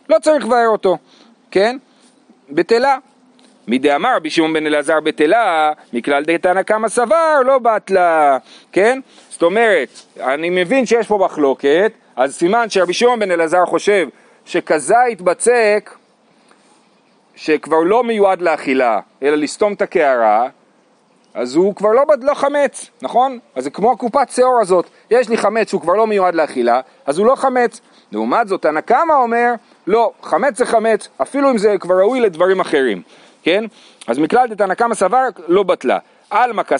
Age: 40-59